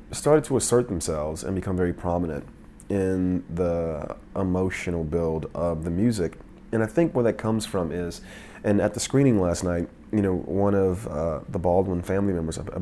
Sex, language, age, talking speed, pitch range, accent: male, English, 30-49, 185 wpm, 90-110 Hz, American